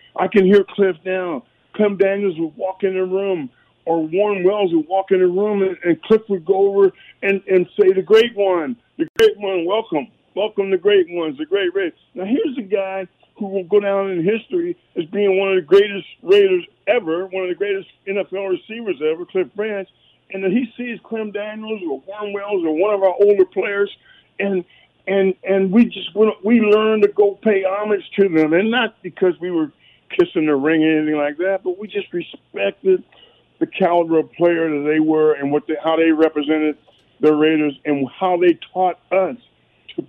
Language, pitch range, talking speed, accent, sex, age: English, 165-210 Hz, 200 wpm, American, male, 50-69